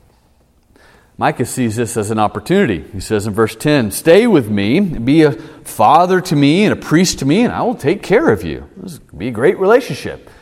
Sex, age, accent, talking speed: male, 40-59, American, 215 wpm